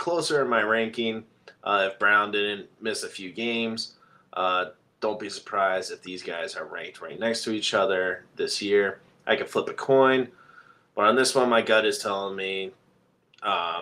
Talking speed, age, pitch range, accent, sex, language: 185 wpm, 30-49, 105-135 Hz, American, male, English